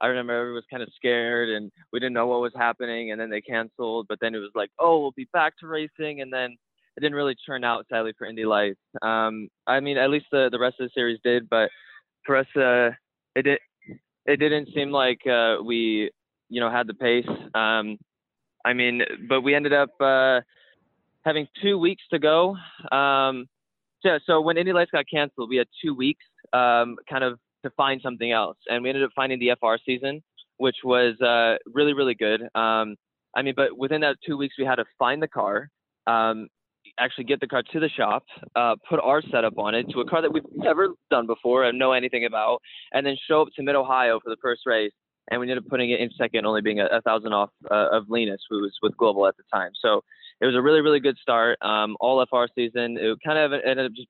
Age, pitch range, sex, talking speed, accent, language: 20-39, 115-140 Hz, male, 230 wpm, American, English